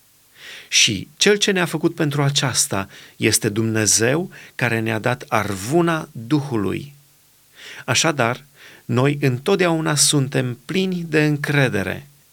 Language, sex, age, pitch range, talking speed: Romanian, male, 30-49, 125-160 Hz, 100 wpm